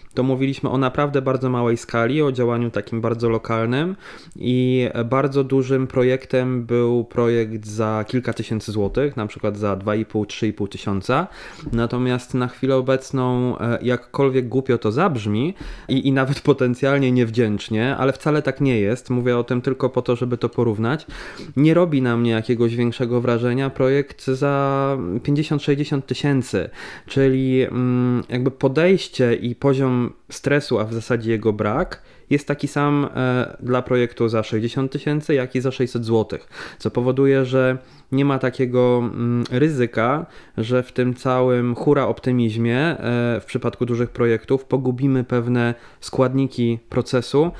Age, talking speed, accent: 20-39, 140 wpm, native